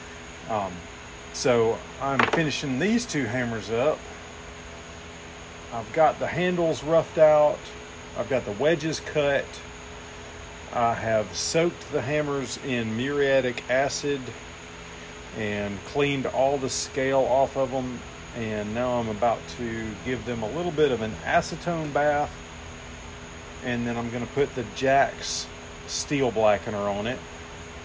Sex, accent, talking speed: male, American, 130 wpm